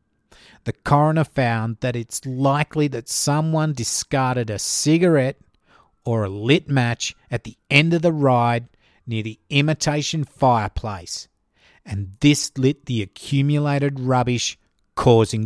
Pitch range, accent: 115-150 Hz, Australian